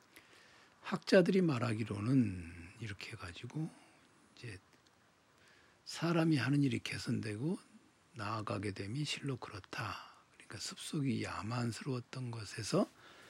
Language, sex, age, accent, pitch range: Korean, male, 60-79, native, 105-130 Hz